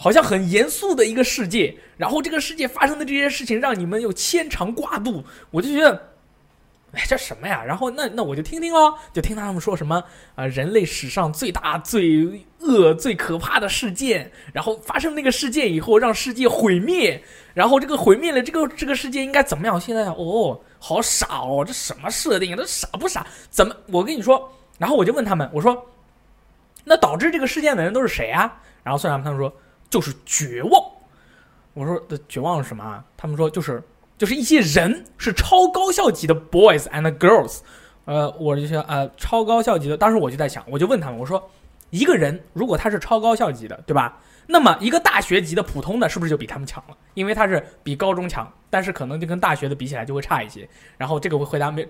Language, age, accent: Chinese, 20-39, native